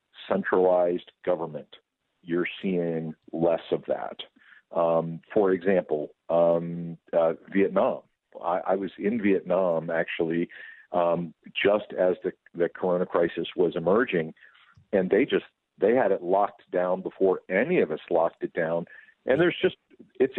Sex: male